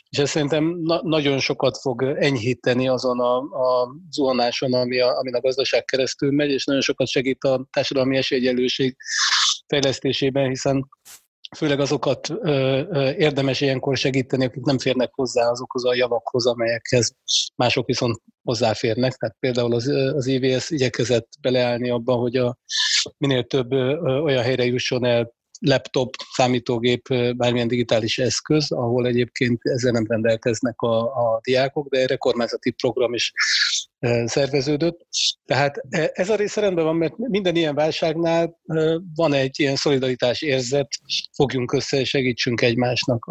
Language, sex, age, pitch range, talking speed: Hungarian, male, 30-49, 125-145 Hz, 145 wpm